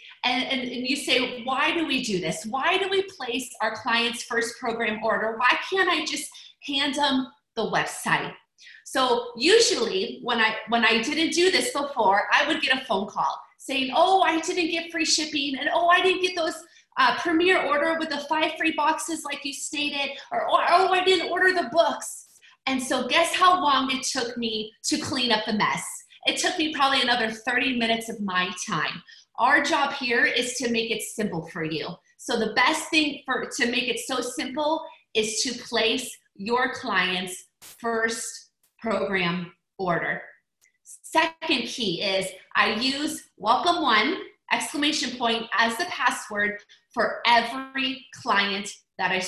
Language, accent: English, American